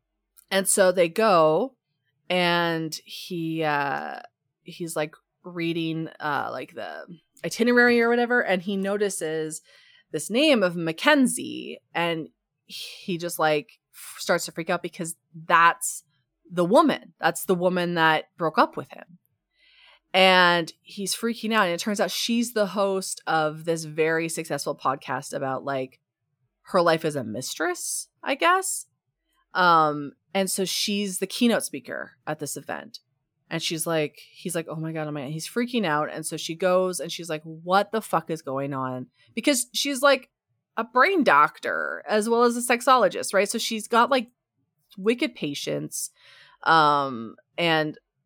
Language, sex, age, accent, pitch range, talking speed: English, female, 20-39, American, 155-215 Hz, 155 wpm